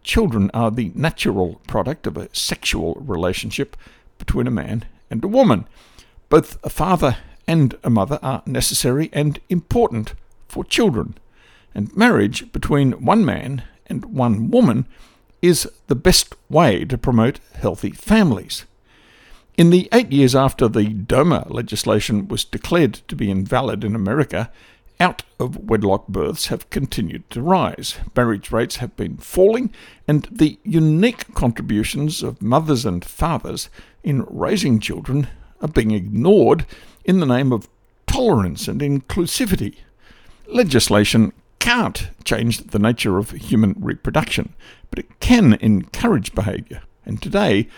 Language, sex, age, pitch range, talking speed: English, male, 60-79, 110-150 Hz, 130 wpm